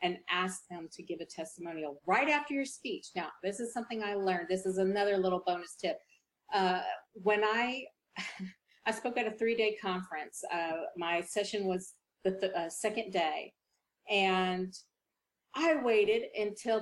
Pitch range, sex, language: 185-275 Hz, female, English